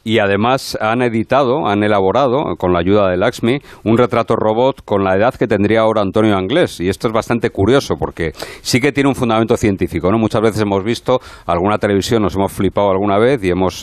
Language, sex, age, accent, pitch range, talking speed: Spanish, male, 50-69, Spanish, 95-125 Hz, 210 wpm